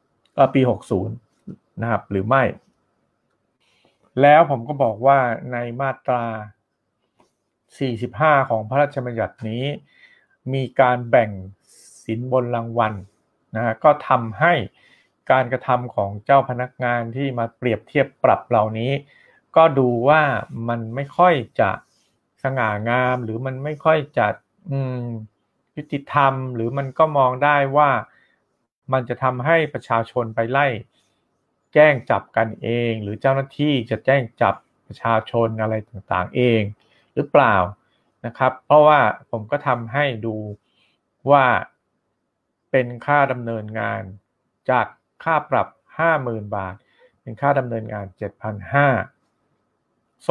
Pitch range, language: 115-140 Hz, Thai